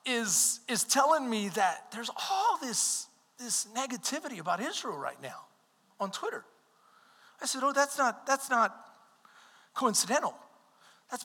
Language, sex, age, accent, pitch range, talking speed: English, male, 40-59, American, 215-275 Hz, 135 wpm